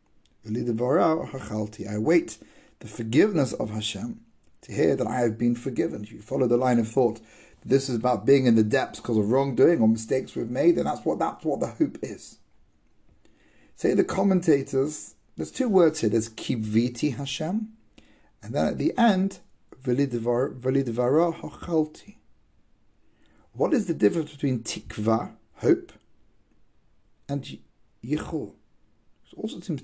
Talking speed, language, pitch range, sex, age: 135 wpm, English, 110-155 Hz, male, 40-59